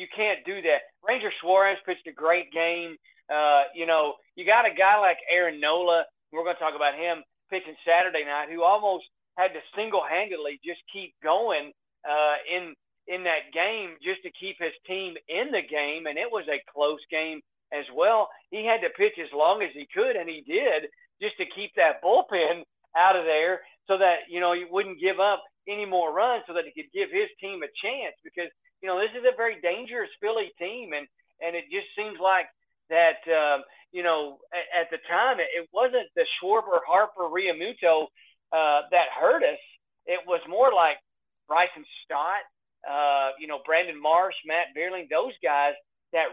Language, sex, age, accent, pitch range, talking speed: English, male, 40-59, American, 160-215 Hz, 195 wpm